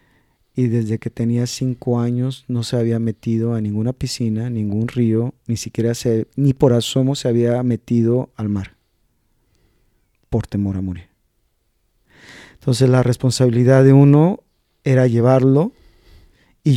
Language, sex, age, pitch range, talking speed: Spanish, male, 40-59, 115-140 Hz, 135 wpm